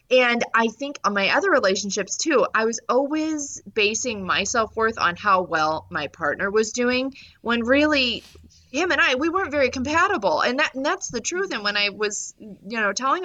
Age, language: 30-49, English